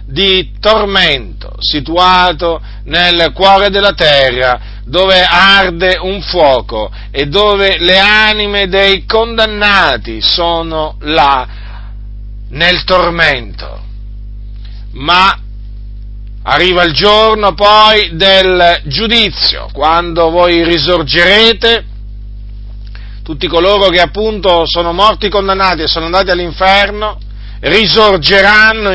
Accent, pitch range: native, 140-200 Hz